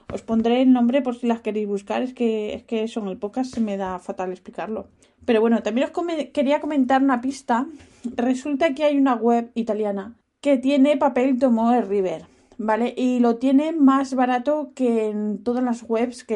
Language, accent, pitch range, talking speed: Spanish, Spanish, 210-255 Hz, 185 wpm